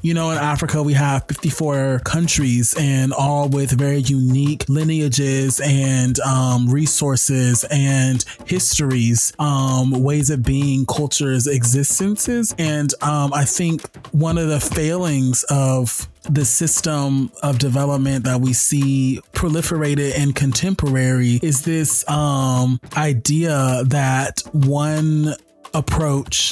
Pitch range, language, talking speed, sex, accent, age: 130-150 Hz, English, 115 wpm, male, American, 30-49